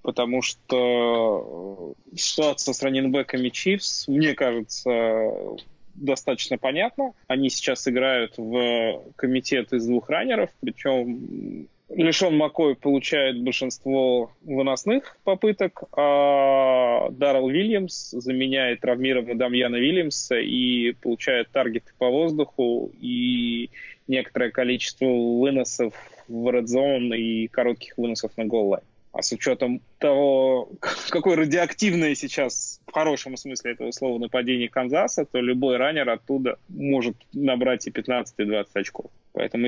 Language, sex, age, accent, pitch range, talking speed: Russian, male, 20-39, native, 120-135 Hz, 115 wpm